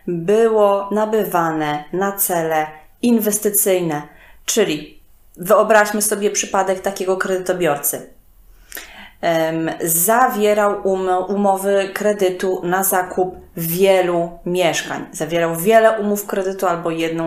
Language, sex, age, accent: Polish, female, 20-39, native